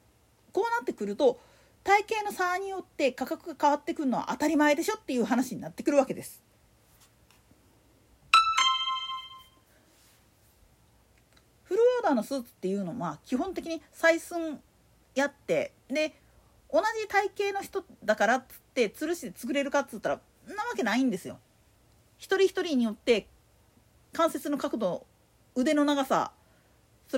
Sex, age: female, 40-59